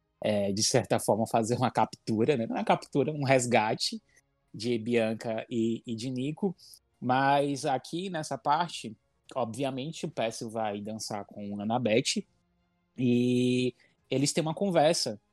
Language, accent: Portuguese, Brazilian